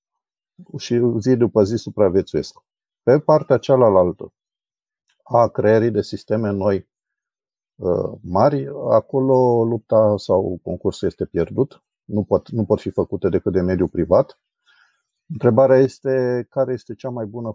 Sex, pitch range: male, 105-125 Hz